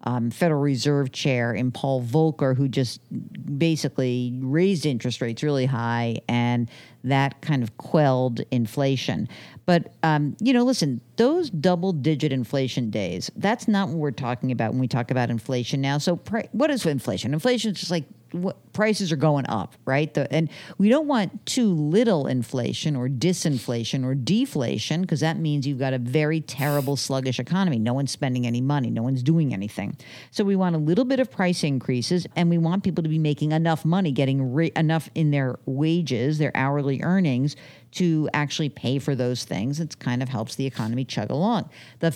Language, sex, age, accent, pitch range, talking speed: English, female, 50-69, American, 130-170 Hz, 180 wpm